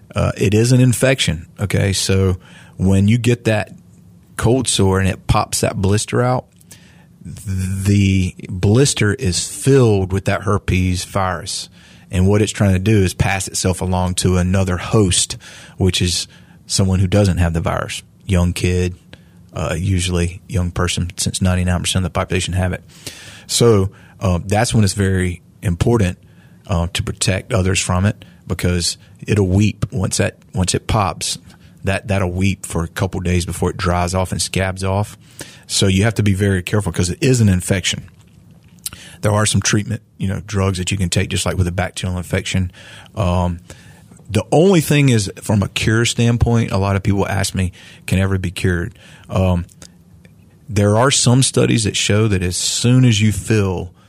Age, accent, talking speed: 30-49, American, 175 wpm